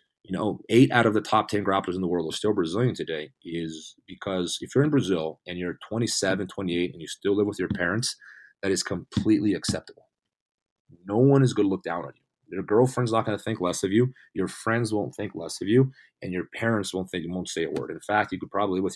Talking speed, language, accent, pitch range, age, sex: 250 wpm, English, American, 90-120 Hz, 30-49, male